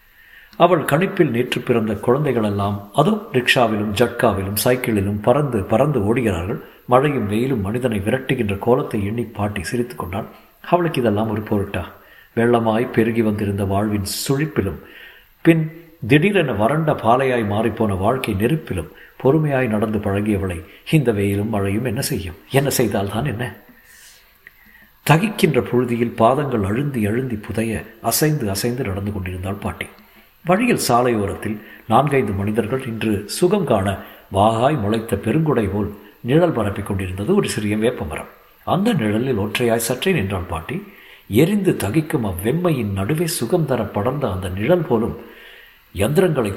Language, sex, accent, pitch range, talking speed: Tamil, male, native, 105-135 Hz, 120 wpm